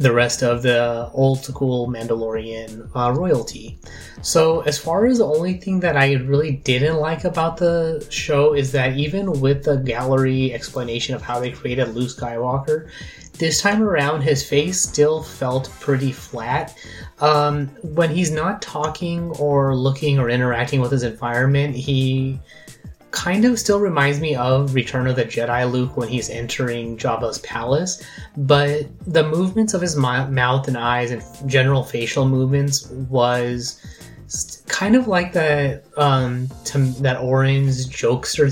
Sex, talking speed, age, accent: male, 150 wpm, 20-39, American